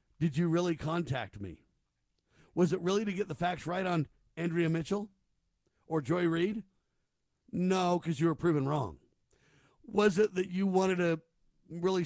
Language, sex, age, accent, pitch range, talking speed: English, male, 50-69, American, 160-195 Hz, 160 wpm